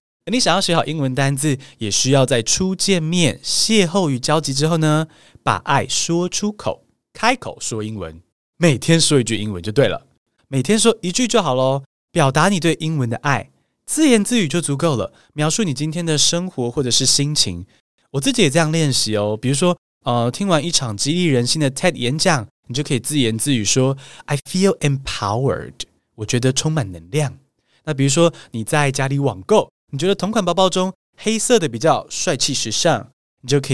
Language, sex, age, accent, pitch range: Chinese, male, 20-39, native, 125-175 Hz